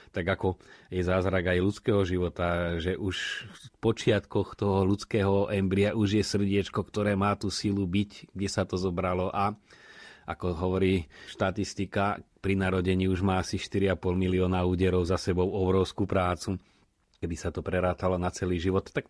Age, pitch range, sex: 30-49, 90-105 Hz, male